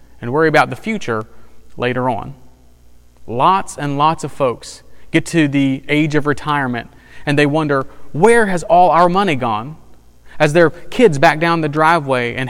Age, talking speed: 30-49, 170 wpm